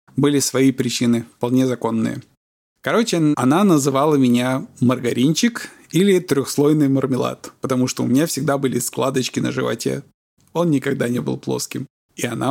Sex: male